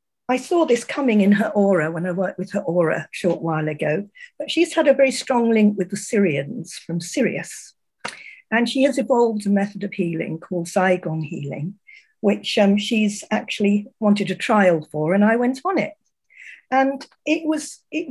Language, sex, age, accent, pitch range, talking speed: German, female, 50-69, British, 190-275 Hz, 190 wpm